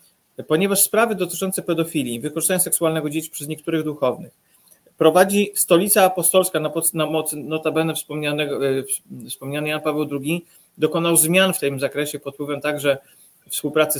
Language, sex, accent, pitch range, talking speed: Polish, male, native, 145-185 Hz, 130 wpm